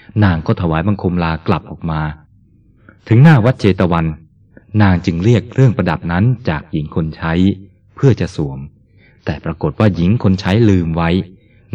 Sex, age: male, 20-39